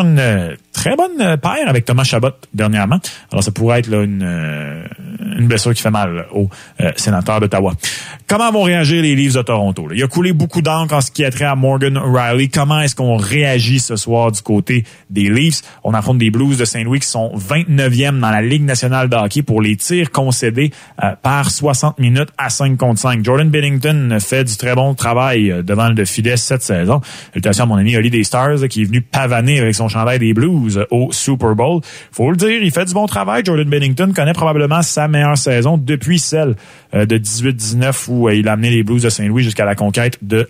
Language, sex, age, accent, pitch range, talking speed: French, male, 30-49, Canadian, 110-145 Hz, 210 wpm